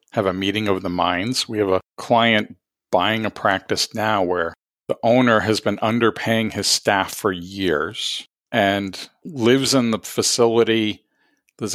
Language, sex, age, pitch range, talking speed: English, male, 40-59, 100-120 Hz, 155 wpm